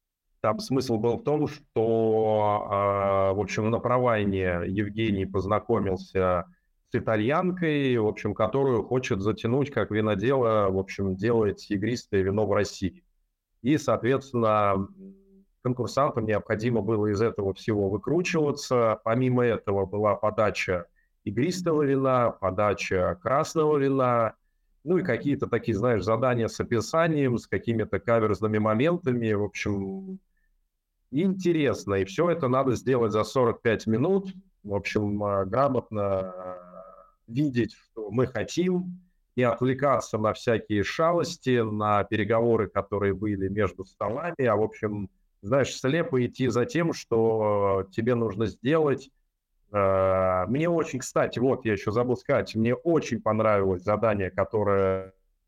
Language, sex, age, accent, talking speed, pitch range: Russian, male, 30-49, native, 120 wpm, 100-130 Hz